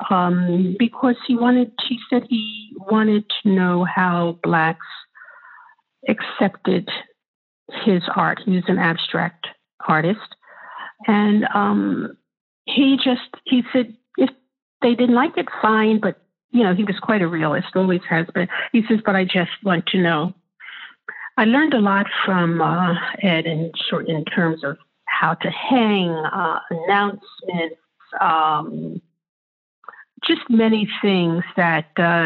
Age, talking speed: 50-69, 140 wpm